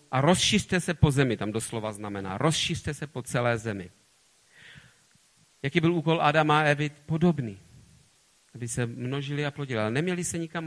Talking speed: 165 wpm